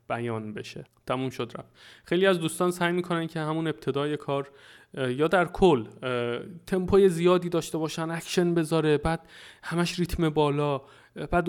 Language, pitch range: Persian, 125-155 Hz